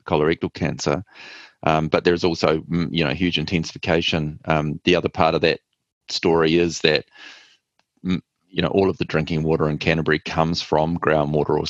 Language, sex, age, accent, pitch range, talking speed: English, male, 30-49, Australian, 75-85 Hz, 165 wpm